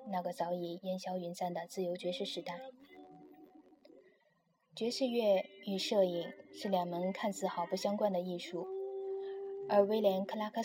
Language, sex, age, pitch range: Chinese, female, 10-29, 180-235 Hz